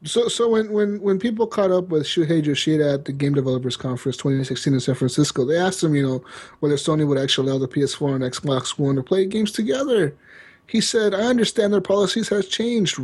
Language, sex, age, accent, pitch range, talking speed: English, male, 30-49, American, 140-195 Hz, 215 wpm